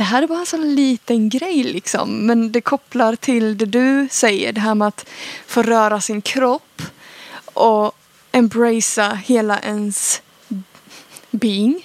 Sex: female